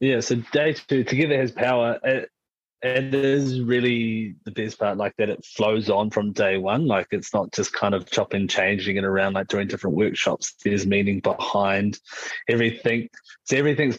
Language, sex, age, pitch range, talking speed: English, male, 20-39, 105-125 Hz, 180 wpm